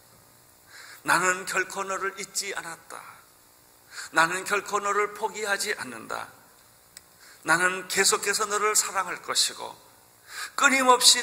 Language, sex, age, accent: Korean, male, 40-59, native